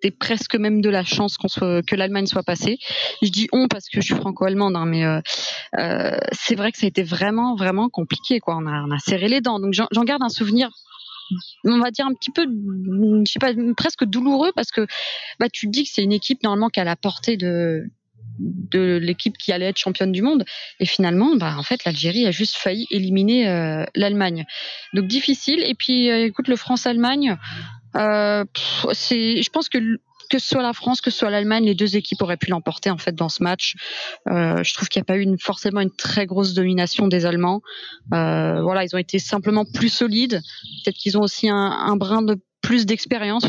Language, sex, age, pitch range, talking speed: French, female, 20-39, 190-230 Hz, 225 wpm